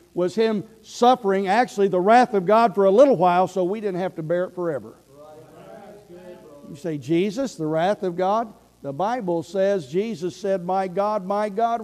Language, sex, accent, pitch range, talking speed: English, male, American, 155-205 Hz, 185 wpm